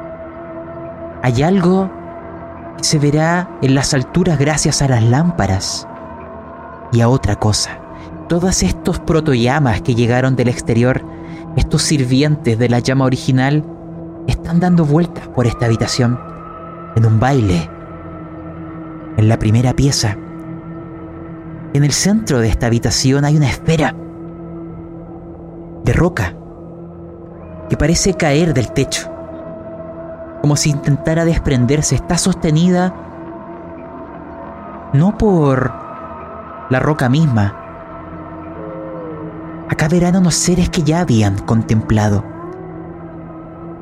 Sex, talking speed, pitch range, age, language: male, 105 wpm, 120-165 Hz, 30-49, Spanish